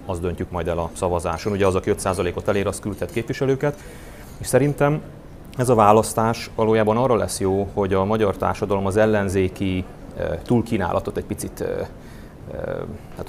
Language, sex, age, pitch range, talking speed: Hungarian, male, 30-49, 95-120 Hz, 150 wpm